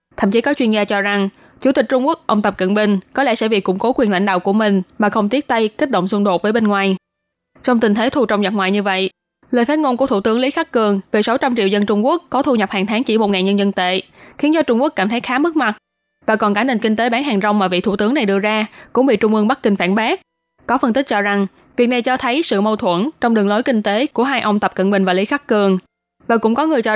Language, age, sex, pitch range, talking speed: Vietnamese, 20-39, female, 195-240 Hz, 305 wpm